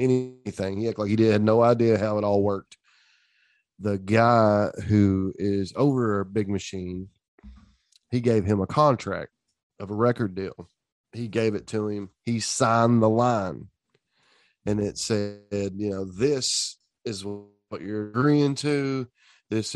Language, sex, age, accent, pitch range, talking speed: English, male, 30-49, American, 105-125 Hz, 155 wpm